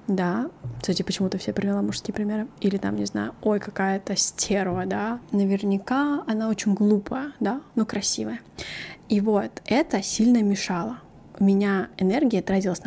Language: Russian